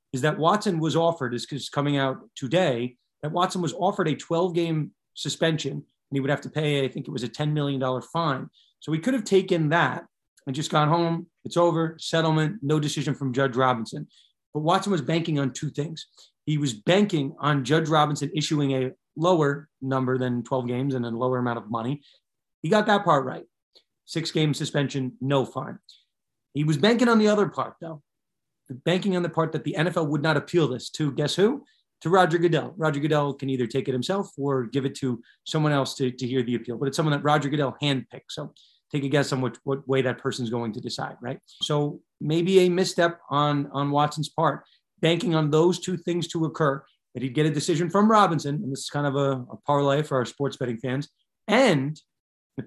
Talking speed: 210 wpm